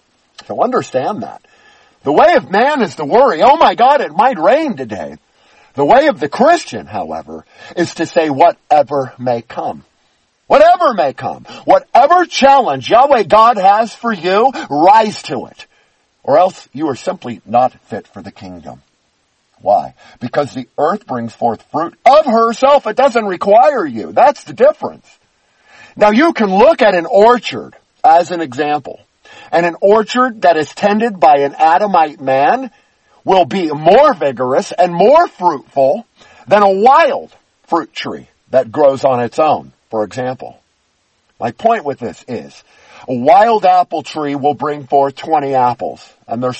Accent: American